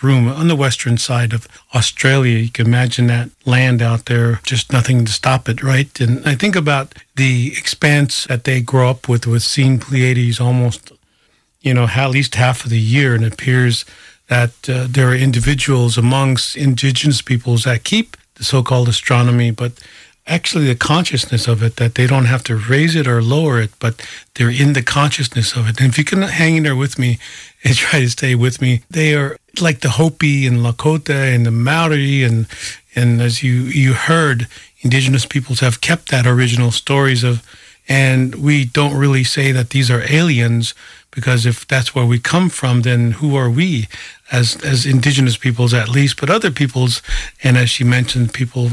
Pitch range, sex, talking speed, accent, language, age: 120-140 Hz, male, 190 wpm, American, English, 50-69